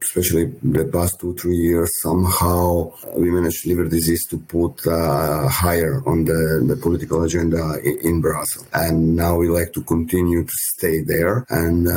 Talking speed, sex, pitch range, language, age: 170 wpm, male, 80-90 Hz, English, 50-69